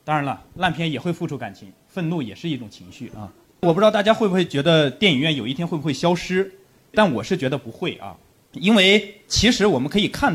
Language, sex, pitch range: Chinese, male, 140-200 Hz